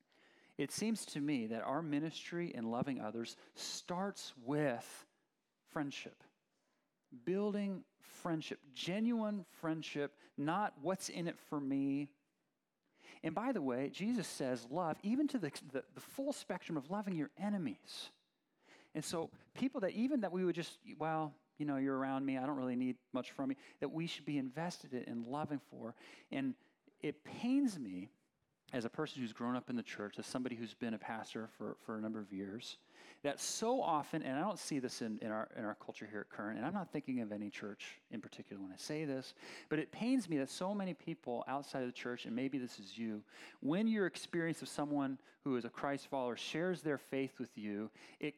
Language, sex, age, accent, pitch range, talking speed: English, male, 40-59, American, 125-185 Hz, 195 wpm